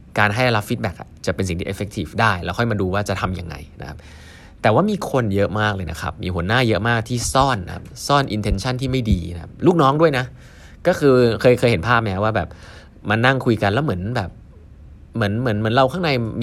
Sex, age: male, 20-39